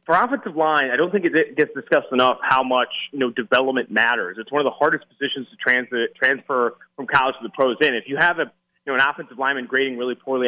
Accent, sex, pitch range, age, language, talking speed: American, male, 135-180 Hz, 30-49, English, 245 wpm